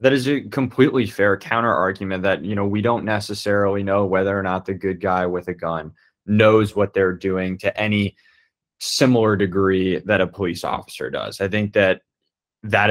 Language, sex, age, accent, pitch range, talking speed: English, male, 20-39, American, 95-125 Hz, 185 wpm